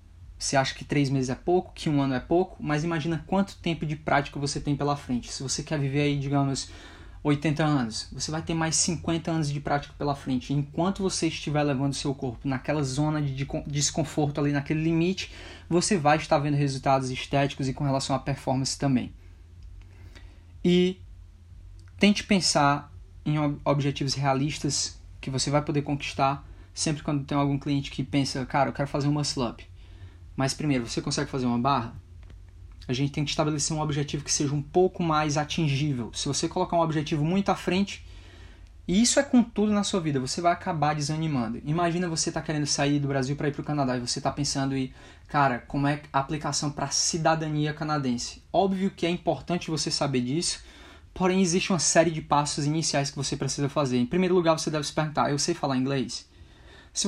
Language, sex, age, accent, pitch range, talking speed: Portuguese, male, 20-39, Brazilian, 135-160 Hz, 195 wpm